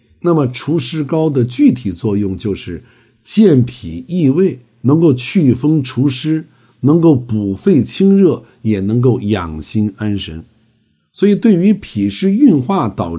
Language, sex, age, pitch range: Chinese, male, 60-79, 105-140 Hz